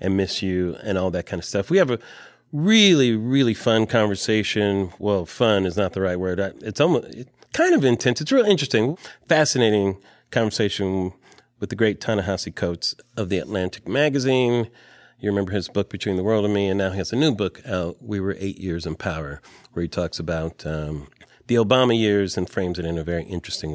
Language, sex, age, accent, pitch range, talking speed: English, male, 40-59, American, 90-115 Hz, 205 wpm